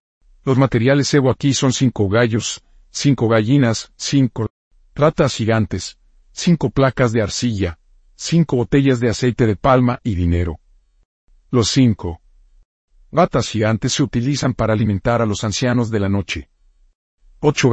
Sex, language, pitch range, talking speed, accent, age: male, Spanish, 90-130 Hz, 130 wpm, Mexican, 50-69